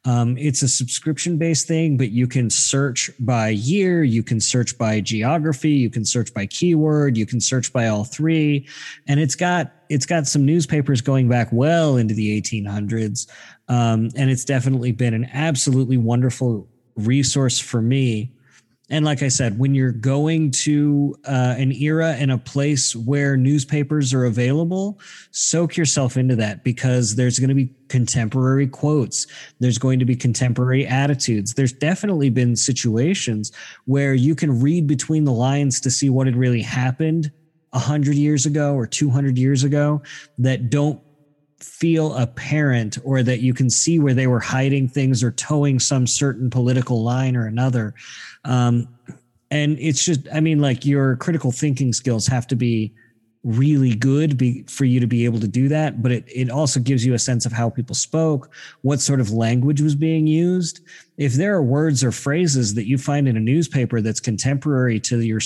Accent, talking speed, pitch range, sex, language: American, 175 wpm, 120-145 Hz, male, English